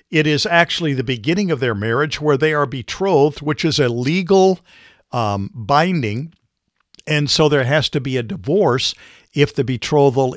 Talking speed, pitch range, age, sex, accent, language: 170 wpm, 120-155 Hz, 50-69, male, American, English